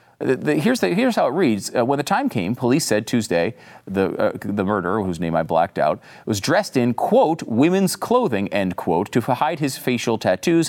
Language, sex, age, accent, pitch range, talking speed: English, male, 40-59, American, 100-150 Hz, 200 wpm